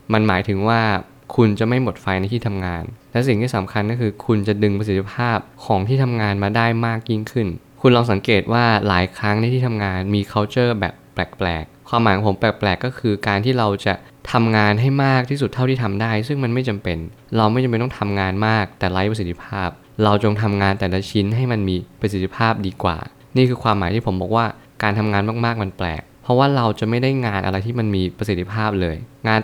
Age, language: 20-39, Thai